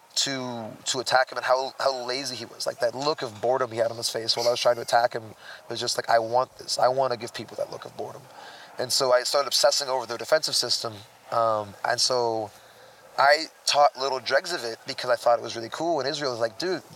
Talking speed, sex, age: 255 wpm, male, 20-39